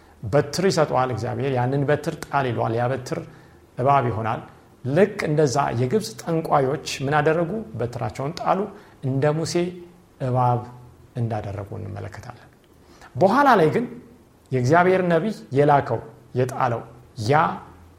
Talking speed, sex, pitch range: 105 wpm, male, 115-180 Hz